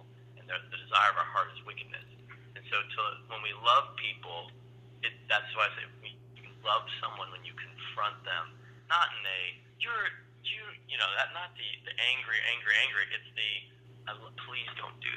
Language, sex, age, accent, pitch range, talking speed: English, male, 30-49, American, 120-125 Hz, 180 wpm